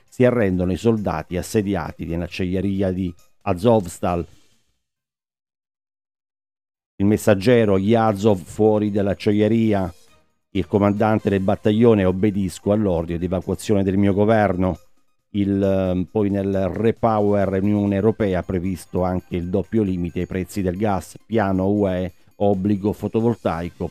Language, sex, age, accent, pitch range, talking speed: Italian, male, 50-69, native, 90-105 Hz, 115 wpm